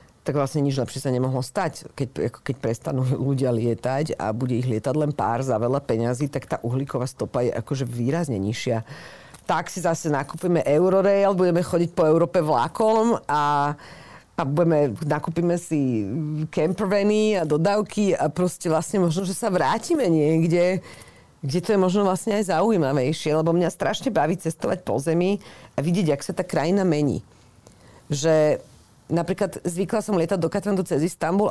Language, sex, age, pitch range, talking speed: Slovak, female, 40-59, 140-190 Hz, 160 wpm